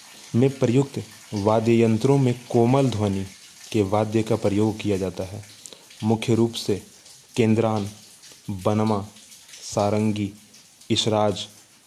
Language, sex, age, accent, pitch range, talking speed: Hindi, male, 30-49, native, 105-120 Hz, 100 wpm